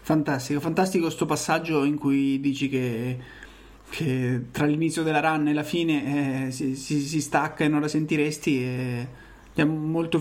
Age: 30-49